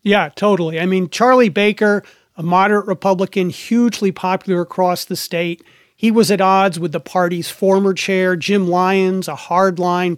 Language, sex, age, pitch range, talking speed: English, male, 40-59, 170-200 Hz, 160 wpm